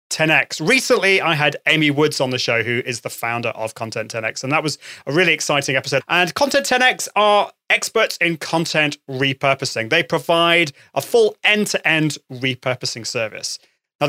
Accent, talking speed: British, 165 wpm